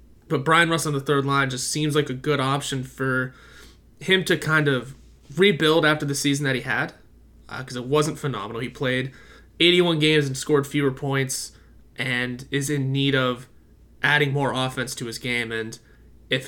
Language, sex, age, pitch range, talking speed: English, male, 20-39, 125-150 Hz, 185 wpm